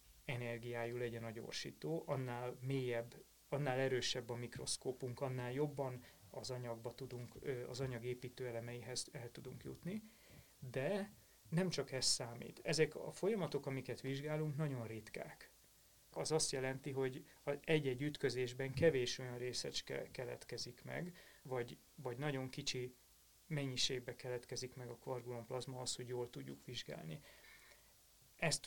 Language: Hungarian